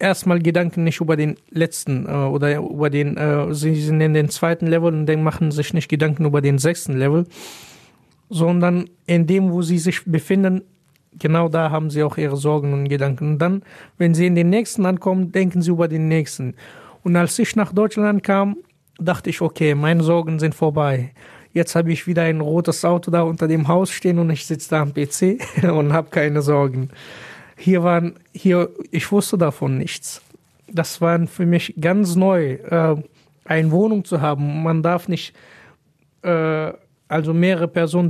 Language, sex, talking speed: German, male, 180 wpm